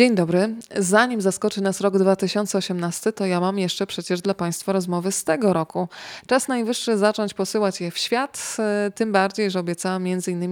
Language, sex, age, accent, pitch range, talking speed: Polish, female, 20-39, native, 180-200 Hz, 170 wpm